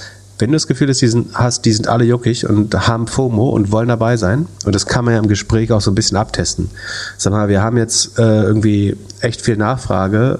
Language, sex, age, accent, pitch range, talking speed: German, male, 30-49, German, 100-120 Hz, 235 wpm